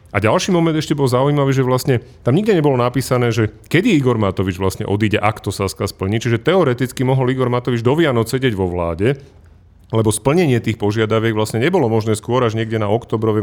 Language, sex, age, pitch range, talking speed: Slovak, male, 30-49, 100-130 Hz, 195 wpm